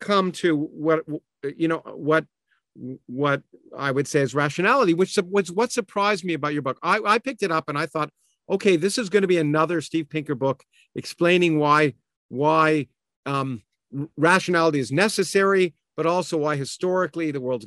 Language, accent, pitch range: English, American, 145-185 Hz